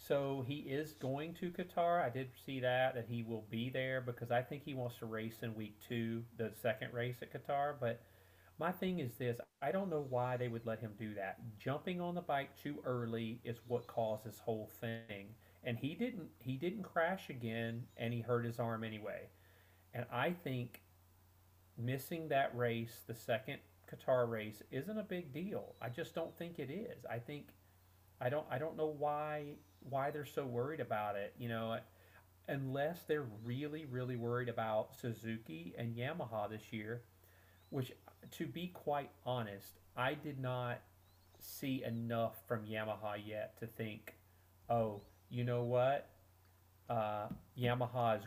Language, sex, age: English, male, 40-59